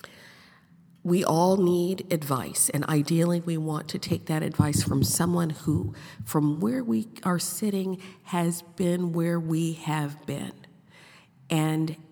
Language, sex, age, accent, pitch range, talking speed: English, female, 50-69, American, 150-190 Hz, 135 wpm